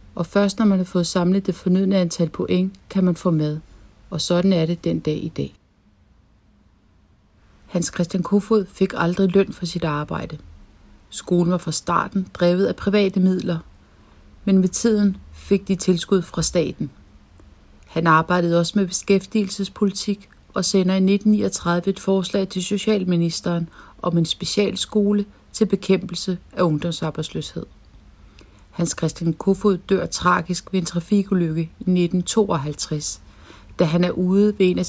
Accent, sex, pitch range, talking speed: native, female, 160-200 Hz, 145 wpm